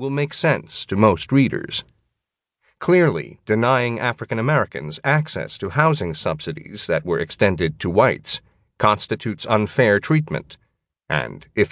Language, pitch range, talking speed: English, 105-150 Hz, 125 wpm